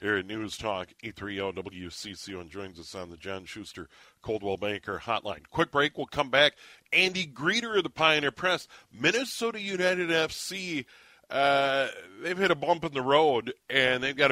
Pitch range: 115-155 Hz